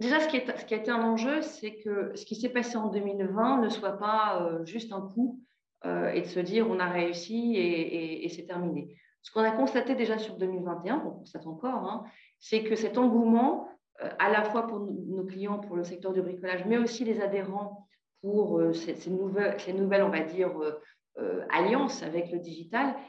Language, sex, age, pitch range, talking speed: French, female, 40-59, 180-225 Hz, 225 wpm